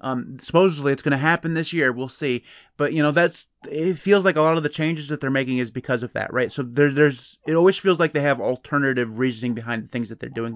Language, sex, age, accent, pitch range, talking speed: English, male, 30-49, American, 130-160 Hz, 260 wpm